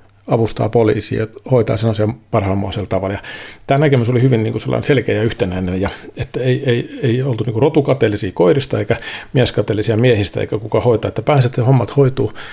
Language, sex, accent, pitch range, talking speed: Finnish, male, native, 105-125 Hz, 175 wpm